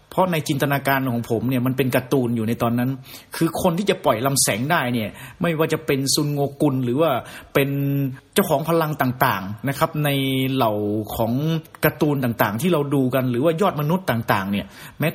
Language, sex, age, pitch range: Thai, male, 30-49, 130-165 Hz